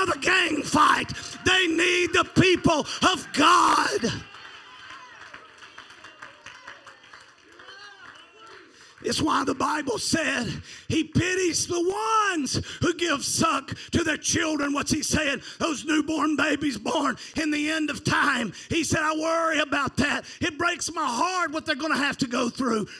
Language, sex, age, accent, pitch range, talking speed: English, male, 40-59, American, 300-390 Hz, 140 wpm